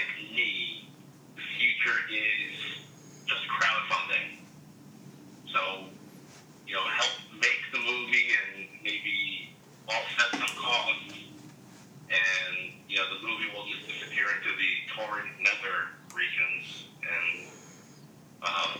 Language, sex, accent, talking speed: English, male, American, 105 wpm